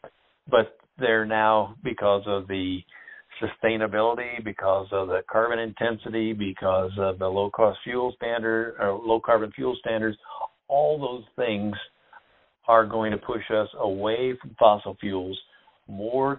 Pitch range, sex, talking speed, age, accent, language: 100-120 Hz, male, 130 wpm, 60-79, American, English